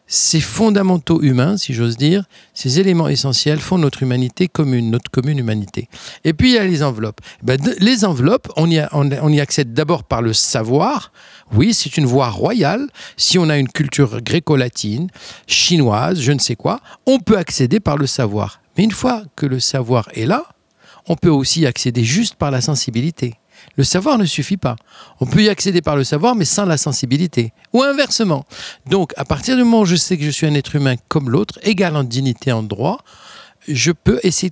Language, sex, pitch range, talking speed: French, male, 130-185 Hz, 195 wpm